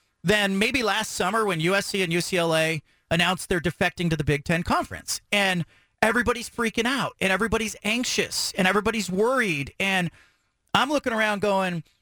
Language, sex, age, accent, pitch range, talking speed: English, male, 40-59, American, 190-240 Hz, 155 wpm